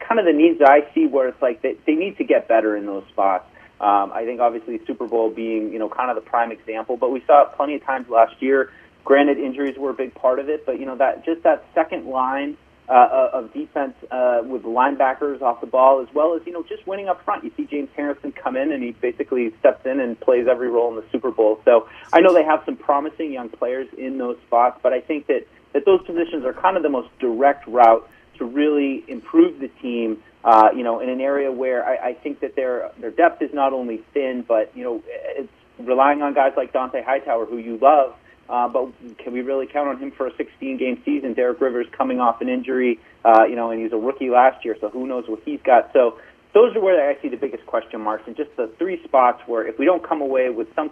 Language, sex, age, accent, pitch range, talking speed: English, male, 30-49, American, 120-160 Hz, 250 wpm